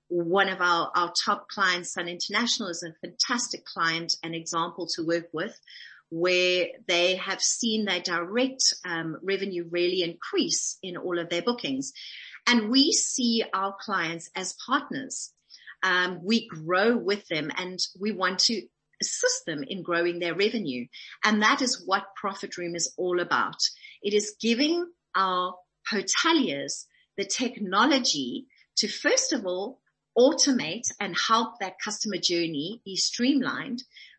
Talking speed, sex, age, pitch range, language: 145 wpm, female, 40-59, 175-240 Hz, English